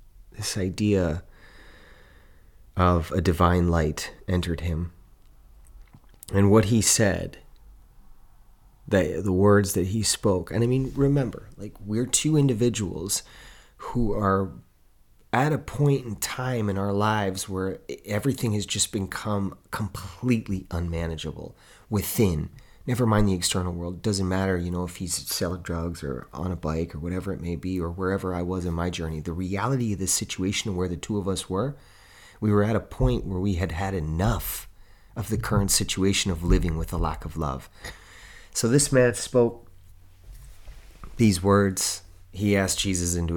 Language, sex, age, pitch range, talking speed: English, male, 30-49, 90-110 Hz, 160 wpm